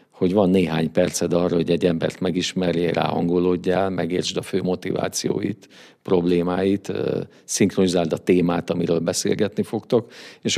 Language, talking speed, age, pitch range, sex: Hungarian, 125 wpm, 50-69, 85-100 Hz, male